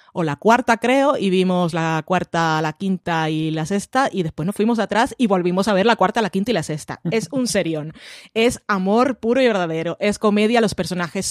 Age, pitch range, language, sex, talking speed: 20-39, 180-215 Hz, Spanish, female, 220 wpm